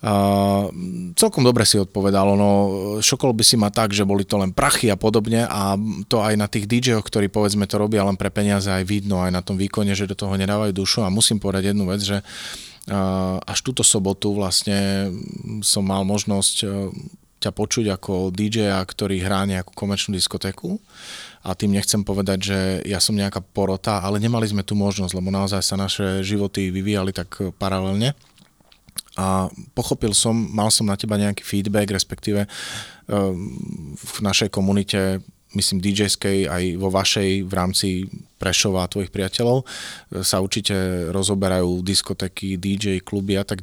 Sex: male